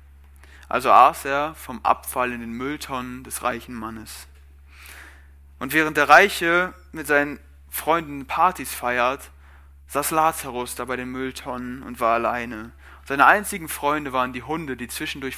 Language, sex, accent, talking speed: German, male, German, 145 wpm